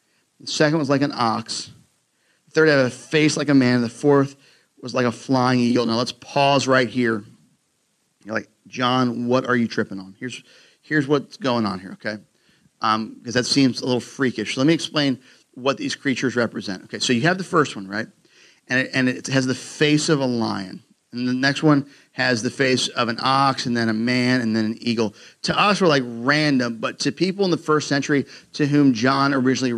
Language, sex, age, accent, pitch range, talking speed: English, male, 40-59, American, 125-160 Hz, 220 wpm